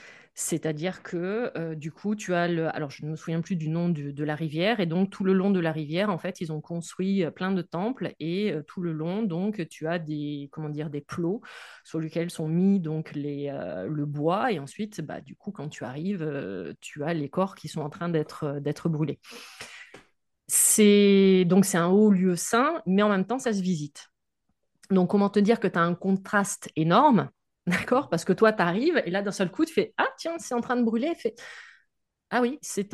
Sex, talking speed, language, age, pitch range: female, 225 wpm, French, 30-49, 165-215 Hz